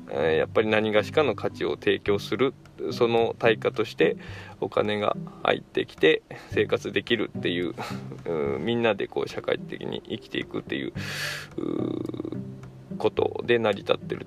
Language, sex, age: Japanese, male, 20-39